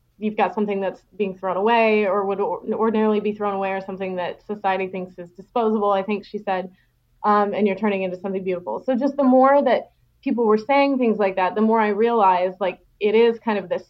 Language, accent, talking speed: English, American, 225 wpm